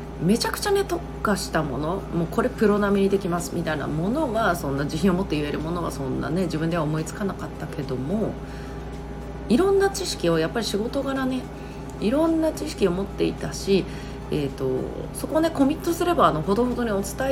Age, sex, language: 30-49, female, Japanese